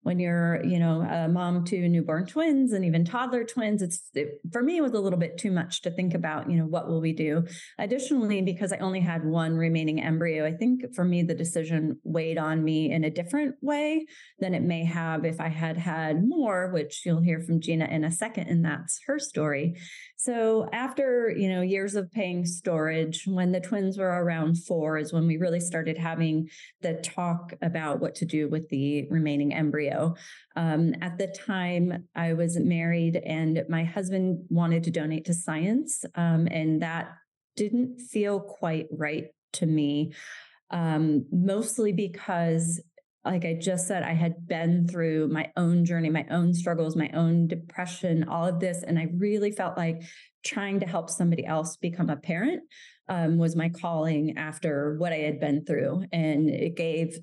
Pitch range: 160-190 Hz